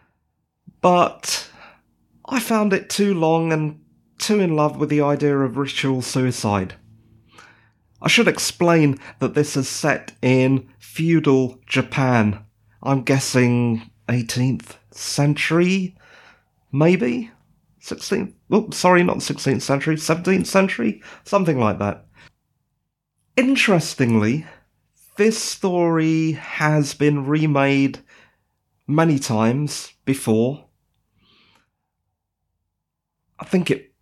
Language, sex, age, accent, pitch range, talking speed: English, male, 30-49, British, 120-160 Hz, 95 wpm